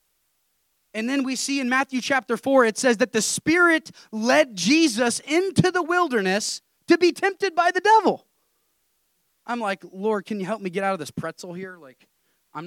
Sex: male